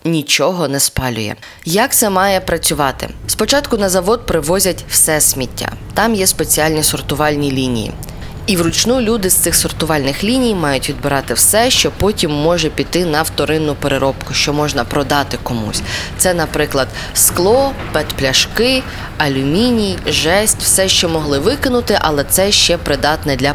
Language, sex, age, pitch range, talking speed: Ukrainian, female, 20-39, 135-180 Hz, 140 wpm